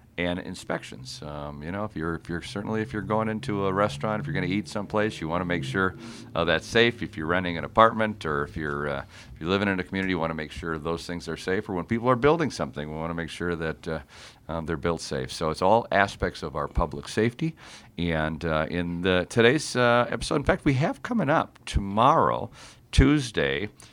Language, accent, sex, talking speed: English, American, male, 235 wpm